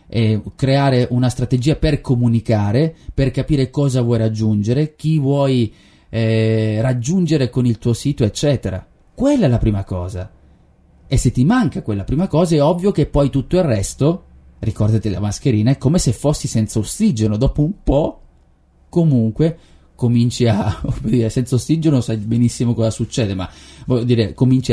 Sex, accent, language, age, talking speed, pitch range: male, native, Italian, 30-49, 155 wpm, 105-140 Hz